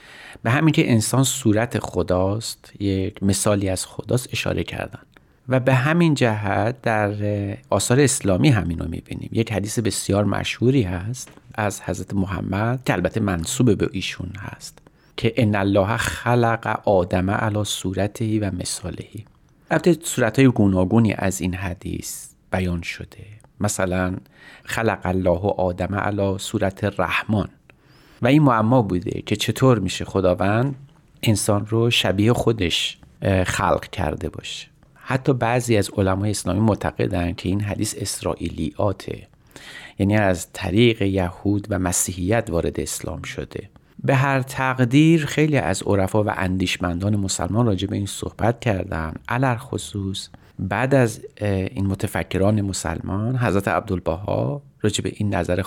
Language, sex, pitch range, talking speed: Persian, male, 95-120 Hz, 130 wpm